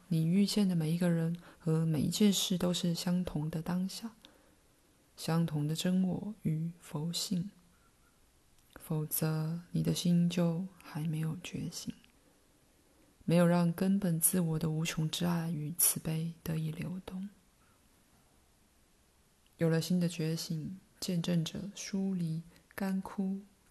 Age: 20-39